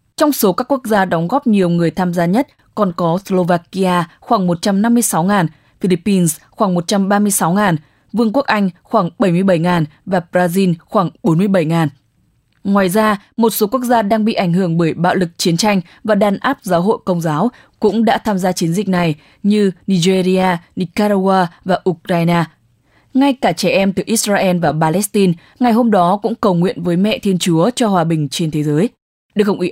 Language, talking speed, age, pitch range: English, 180 wpm, 20-39, 170-210 Hz